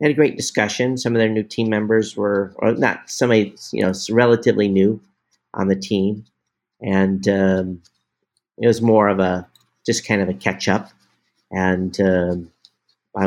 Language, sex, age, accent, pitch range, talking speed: English, male, 50-69, American, 90-100 Hz, 165 wpm